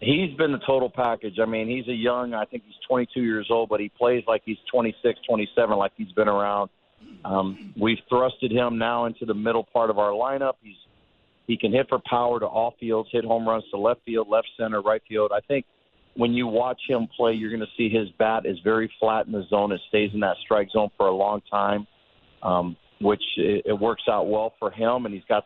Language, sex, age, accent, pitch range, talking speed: English, male, 40-59, American, 105-120 Hz, 230 wpm